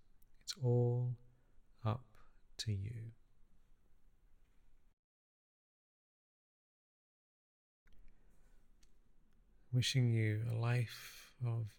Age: 40-59